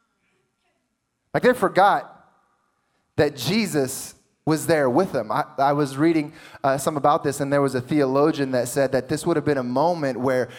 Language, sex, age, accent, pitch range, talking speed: English, male, 20-39, American, 135-170 Hz, 180 wpm